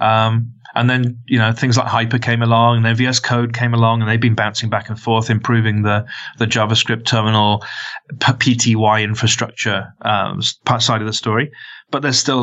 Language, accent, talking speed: English, British, 185 wpm